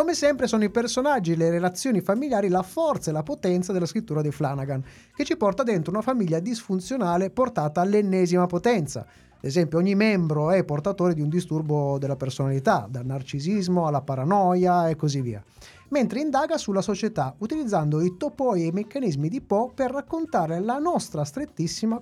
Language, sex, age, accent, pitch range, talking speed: Italian, male, 30-49, native, 155-245 Hz, 170 wpm